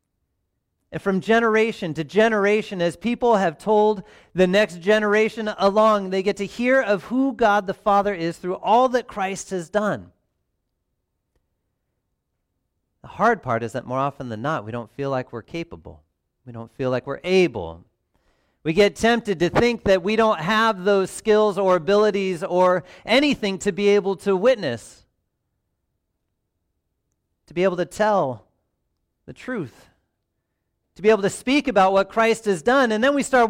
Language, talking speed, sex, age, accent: English, 165 wpm, male, 40-59, American